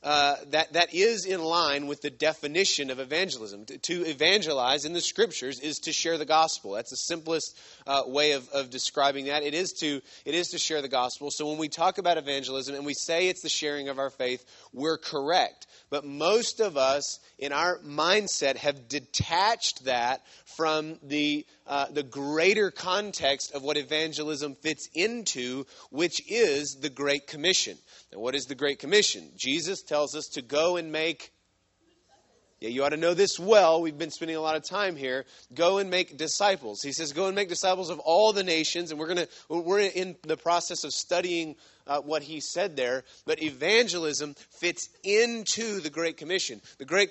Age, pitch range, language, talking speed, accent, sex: 30-49, 145-180 Hz, English, 190 wpm, American, male